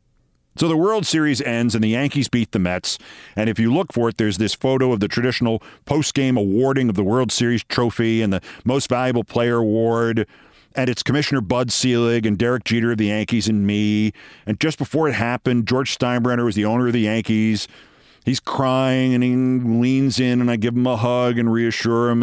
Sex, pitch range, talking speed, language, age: male, 115-165 Hz, 210 wpm, English, 50-69